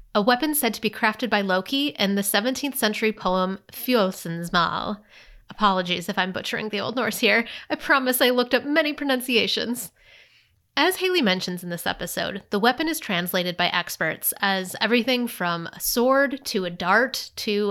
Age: 30-49